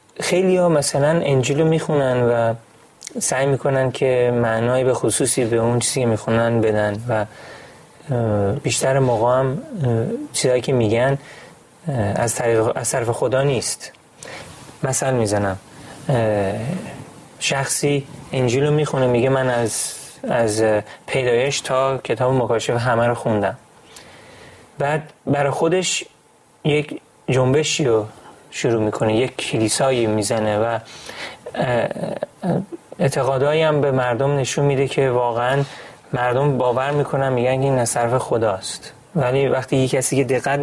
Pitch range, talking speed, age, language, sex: 115-145 Hz, 115 wpm, 30-49, Persian, male